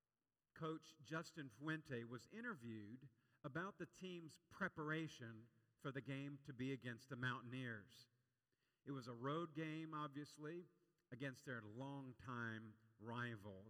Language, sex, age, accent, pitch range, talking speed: English, male, 50-69, American, 125-165 Hz, 120 wpm